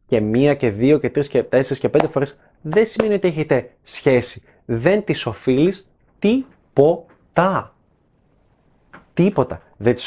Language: Greek